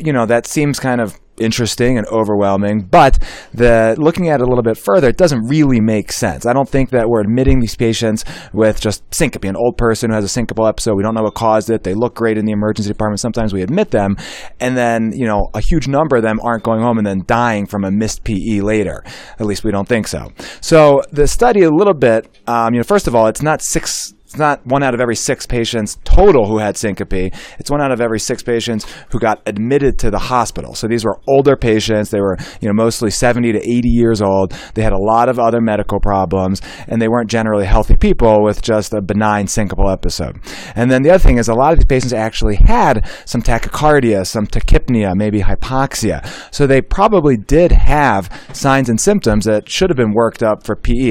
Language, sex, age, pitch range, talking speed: English, male, 30-49, 105-125 Hz, 230 wpm